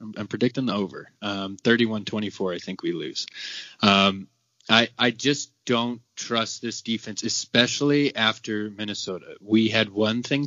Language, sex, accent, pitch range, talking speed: English, male, American, 105-125 Hz, 145 wpm